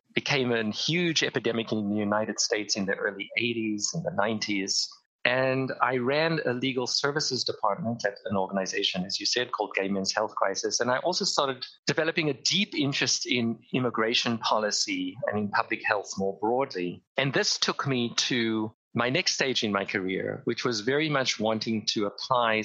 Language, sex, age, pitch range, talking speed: English, male, 30-49, 105-140 Hz, 180 wpm